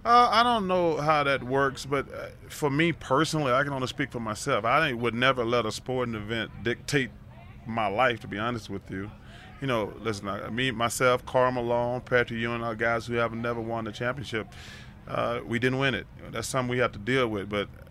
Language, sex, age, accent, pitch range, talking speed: English, male, 20-39, American, 115-135 Hz, 215 wpm